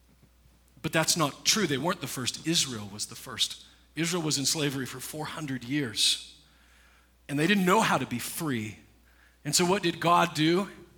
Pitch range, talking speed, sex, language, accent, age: 110-175 Hz, 180 wpm, male, English, American, 40-59